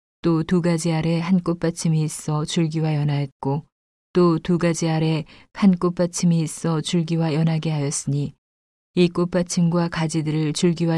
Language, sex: Korean, female